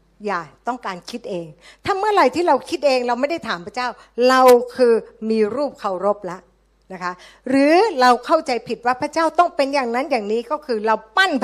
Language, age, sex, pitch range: Thai, 60-79, female, 205-280 Hz